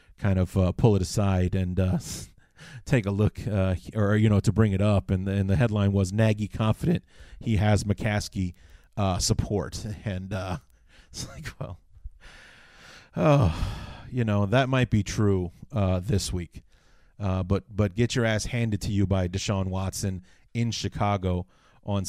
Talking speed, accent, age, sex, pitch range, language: 170 wpm, American, 30-49, male, 95-110 Hz, English